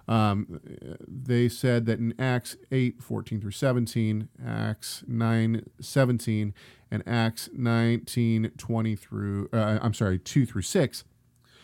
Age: 40-59